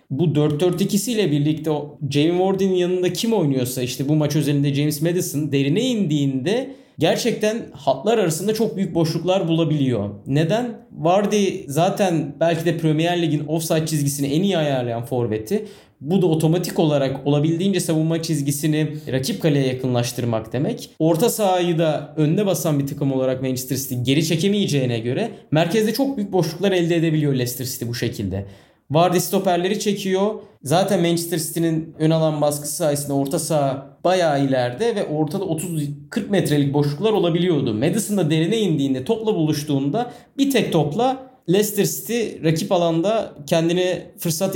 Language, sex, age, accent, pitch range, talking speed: Turkish, male, 30-49, native, 145-200 Hz, 140 wpm